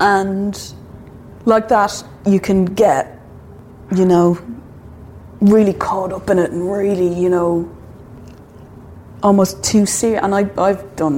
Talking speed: 130 wpm